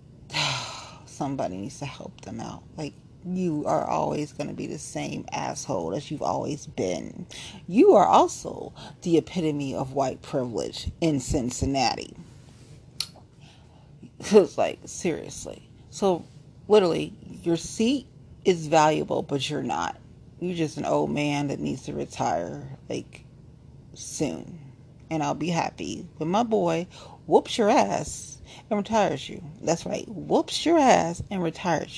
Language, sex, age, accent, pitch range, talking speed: English, female, 40-59, American, 135-185 Hz, 135 wpm